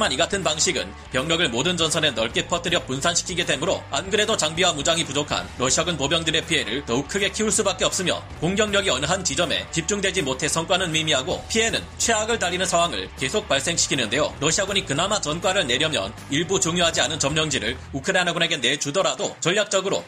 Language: Korean